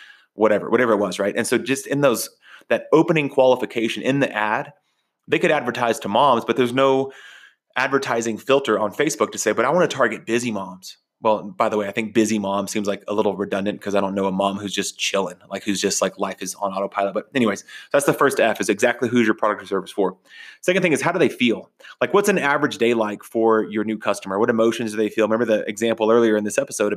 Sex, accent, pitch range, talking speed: male, American, 100-125 Hz, 245 wpm